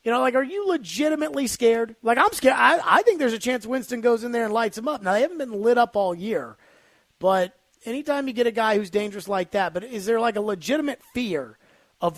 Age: 30-49